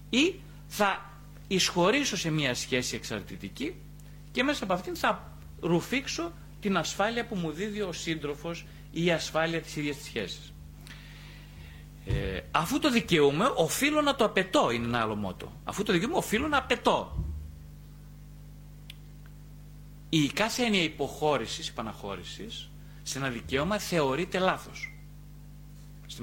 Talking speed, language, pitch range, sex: 130 wpm, Greek, 130-175 Hz, male